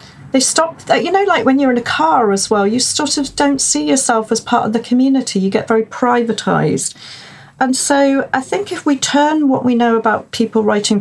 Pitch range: 185-245 Hz